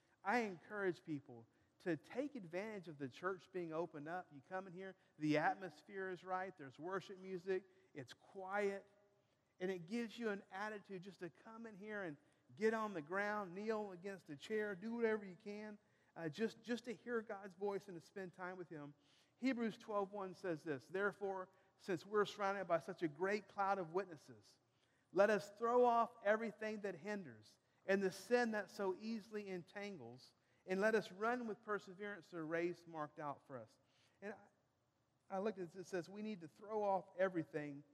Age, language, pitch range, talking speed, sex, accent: 50-69, English, 150-210 Hz, 185 wpm, male, American